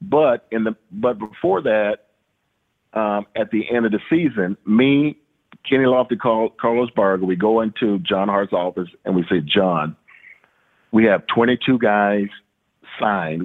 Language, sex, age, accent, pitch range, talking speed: English, male, 50-69, American, 100-125 Hz, 145 wpm